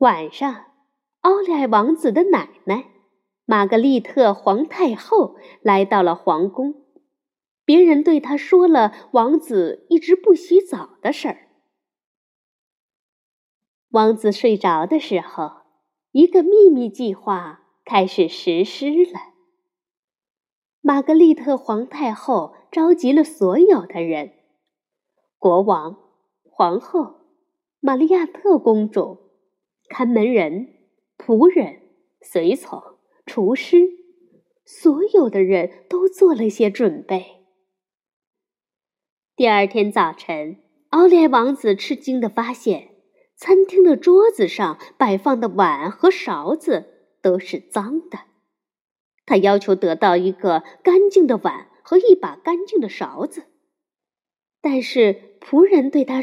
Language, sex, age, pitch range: Chinese, female, 20-39, 215-350 Hz